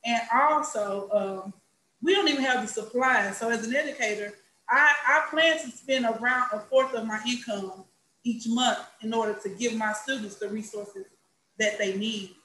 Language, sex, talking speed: English, female, 180 wpm